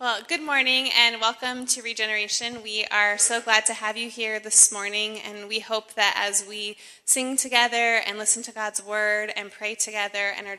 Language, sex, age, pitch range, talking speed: English, female, 20-39, 195-220 Hz, 200 wpm